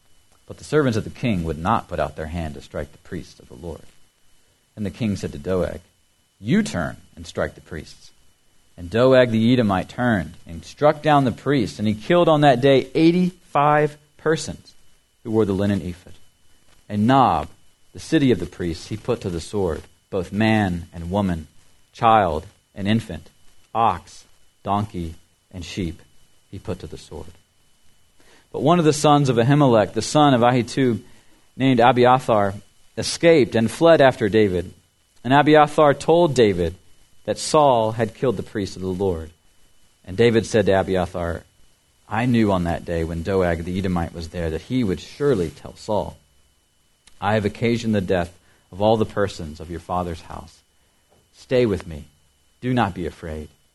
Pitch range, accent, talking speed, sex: 85-120 Hz, American, 175 wpm, male